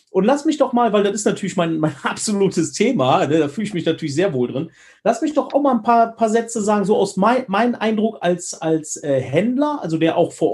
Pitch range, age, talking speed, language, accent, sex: 165-240 Hz, 40-59, 245 wpm, German, German, male